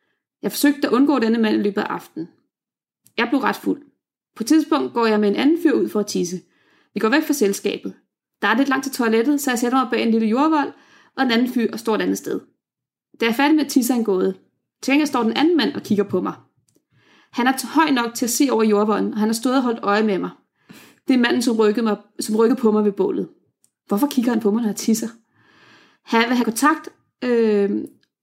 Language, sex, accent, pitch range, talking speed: Danish, female, native, 205-255 Hz, 240 wpm